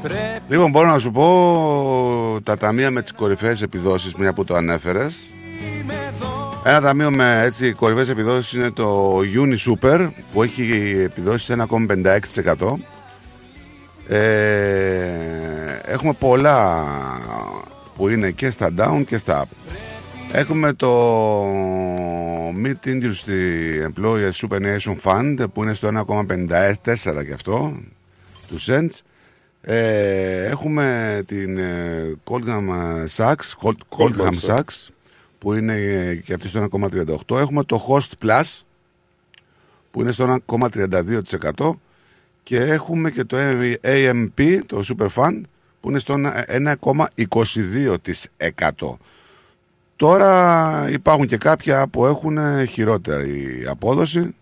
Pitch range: 95-130 Hz